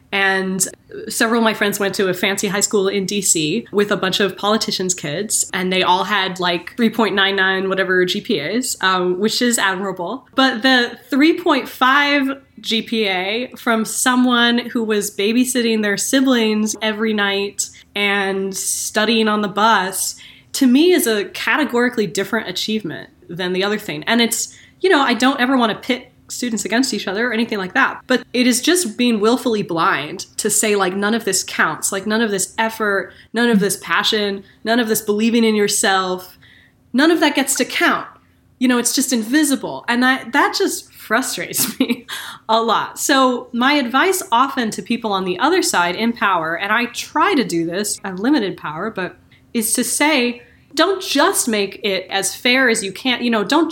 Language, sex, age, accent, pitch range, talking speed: English, female, 20-39, American, 195-250 Hz, 180 wpm